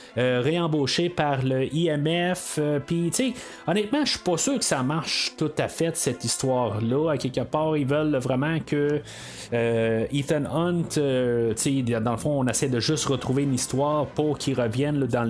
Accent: Canadian